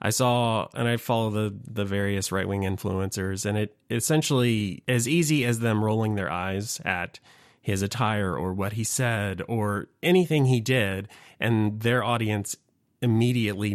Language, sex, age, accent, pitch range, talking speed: English, male, 30-49, American, 100-115 Hz, 155 wpm